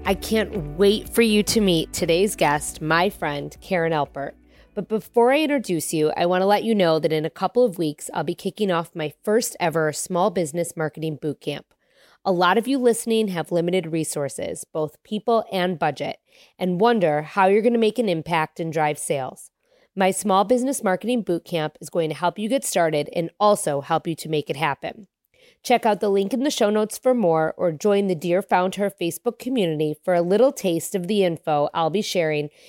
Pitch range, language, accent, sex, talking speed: 160-215 Hz, English, American, female, 205 wpm